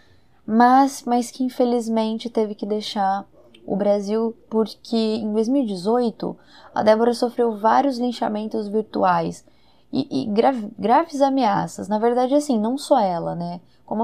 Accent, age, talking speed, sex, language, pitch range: Brazilian, 10-29, 130 wpm, female, Portuguese, 190-260 Hz